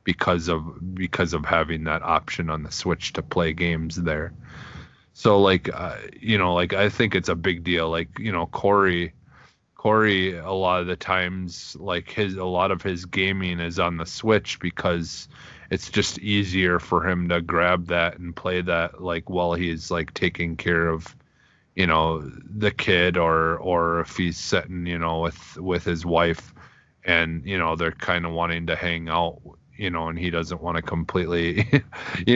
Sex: male